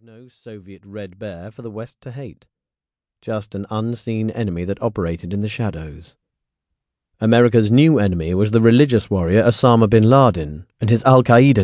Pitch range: 95-125 Hz